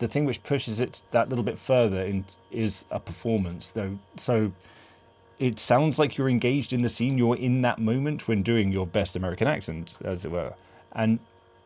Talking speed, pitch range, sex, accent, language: 185 wpm, 95-120 Hz, male, British, English